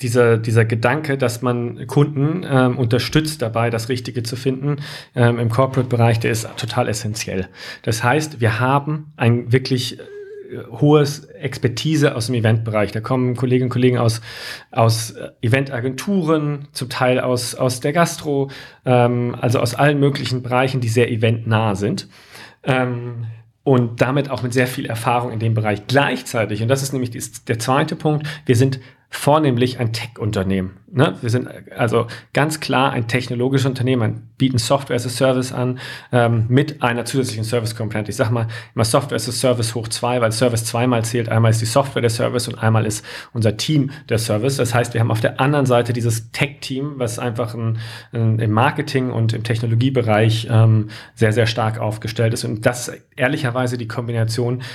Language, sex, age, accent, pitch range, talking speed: German, male, 40-59, German, 115-135 Hz, 170 wpm